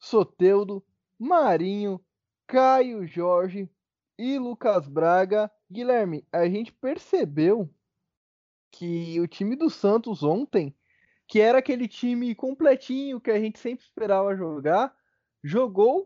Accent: Brazilian